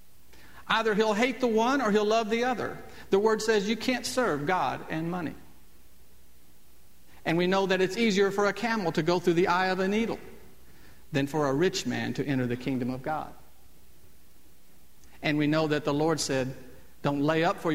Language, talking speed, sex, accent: English, 195 wpm, male, American